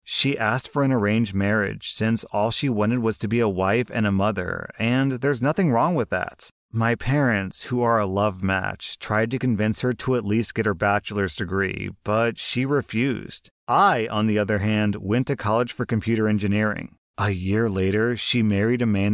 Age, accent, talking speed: 30-49, American, 200 wpm